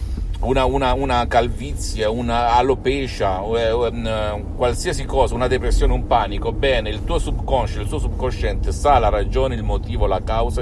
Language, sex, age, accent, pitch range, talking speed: Italian, male, 50-69, native, 95-125 Hz, 160 wpm